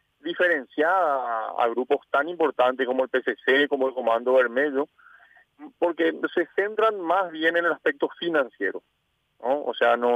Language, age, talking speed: Spanish, 50-69, 150 wpm